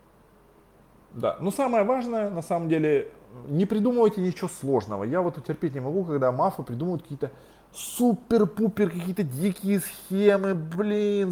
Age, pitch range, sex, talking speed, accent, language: 20-39, 135-195 Hz, male, 135 wpm, native, Russian